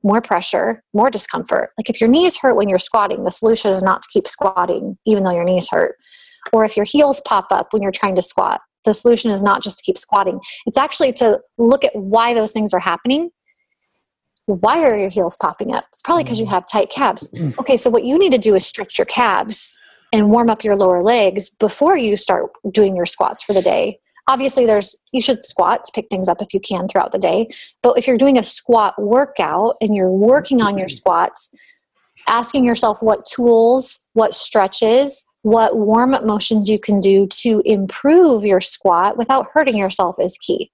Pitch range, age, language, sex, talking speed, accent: 200-260 Hz, 30-49, English, female, 210 wpm, American